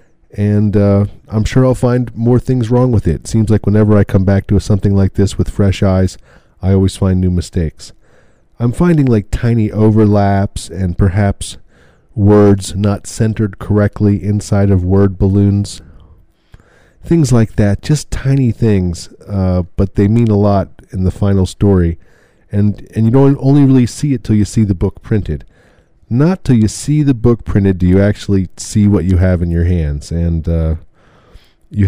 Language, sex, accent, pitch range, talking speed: English, male, American, 90-110 Hz, 175 wpm